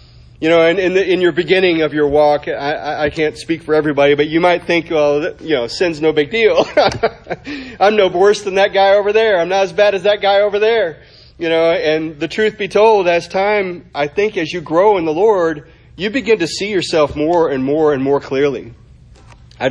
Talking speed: 225 wpm